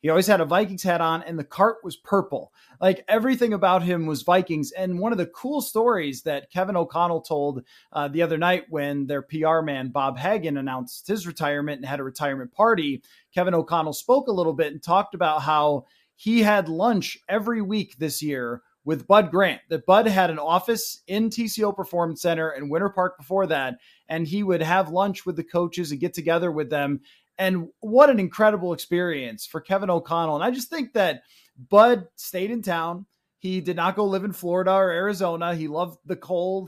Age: 30-49